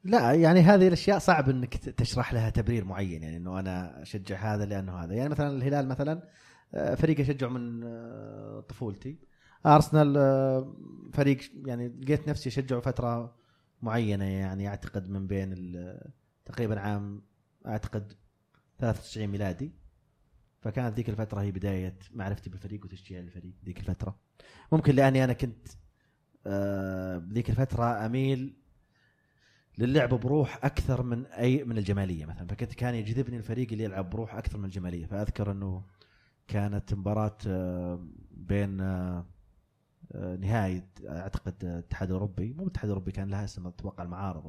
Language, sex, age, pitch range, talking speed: Arabic, male, 30-49, 95-130 Hz, 130 wpm